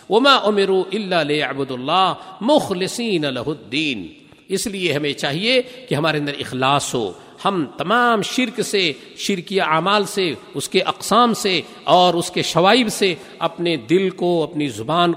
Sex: male